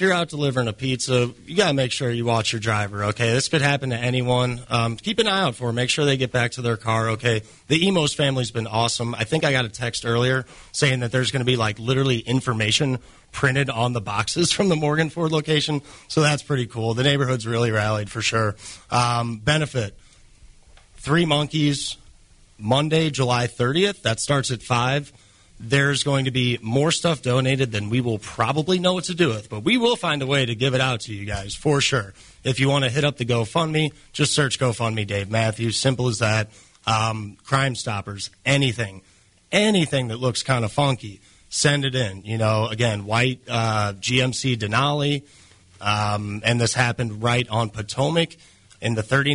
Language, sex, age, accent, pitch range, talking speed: English, male, 30-49, American, 110-140 Hz, 200 wpm